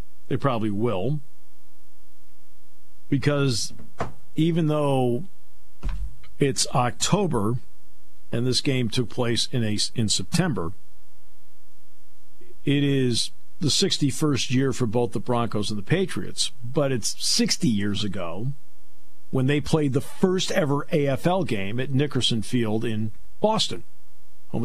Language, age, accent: English, 50-69, American